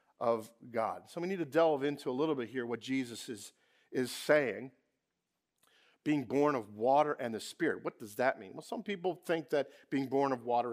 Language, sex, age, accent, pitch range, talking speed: English, male, 50-69, American, 130-175 Hz, 205 wpm